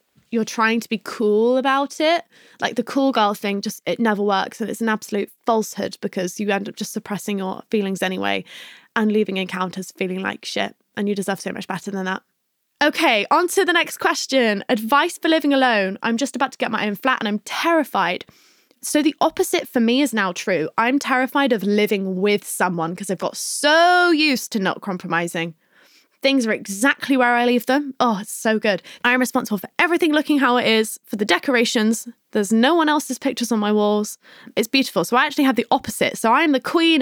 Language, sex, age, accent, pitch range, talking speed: English, female, 20-39, British, 205-260 Hz, 210 wpm